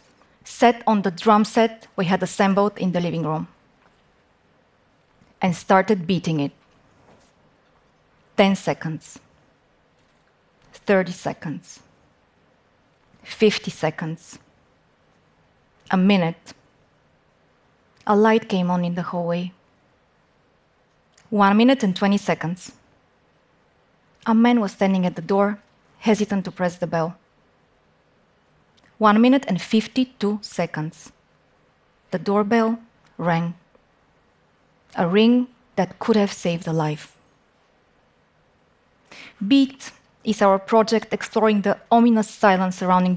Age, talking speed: 20-39, 100 wpm